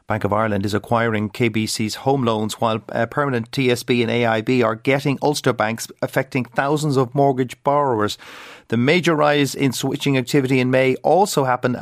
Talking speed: 170 wpm